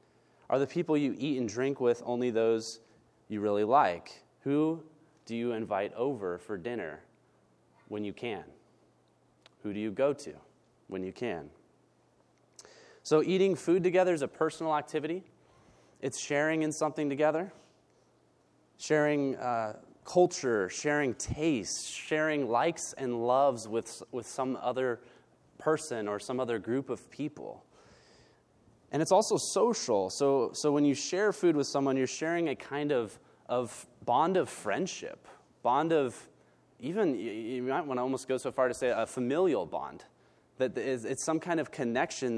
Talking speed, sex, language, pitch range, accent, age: 150 wpm, male, English, 115-150 Hz, American, 30-49